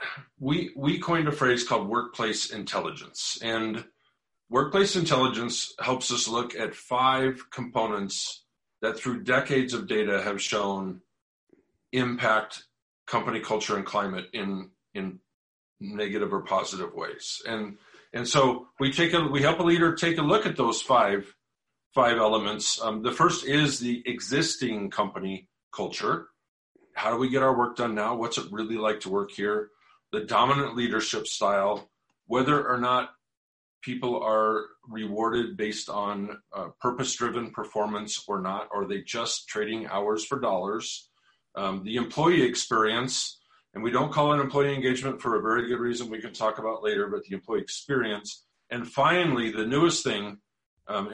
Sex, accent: male, American